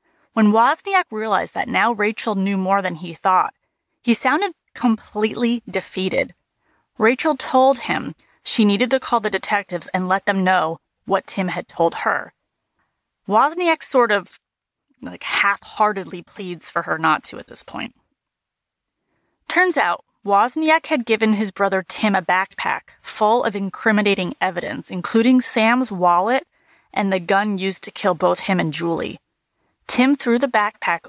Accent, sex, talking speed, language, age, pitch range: American, female, 150 wpm, English, 30-49, 190-240 Hz